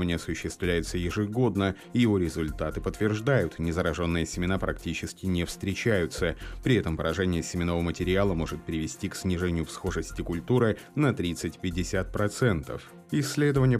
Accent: native